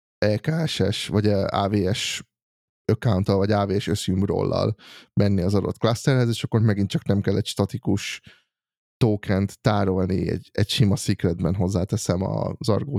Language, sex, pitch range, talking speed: Hungarian, male, 95-115 Hz, 140 wpm